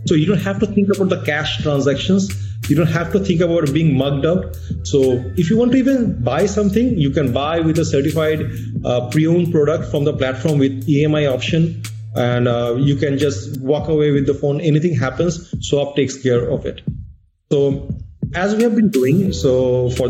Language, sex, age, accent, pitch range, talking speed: English, male, 30-49, Indian, 130-160 Hz, 200 wpm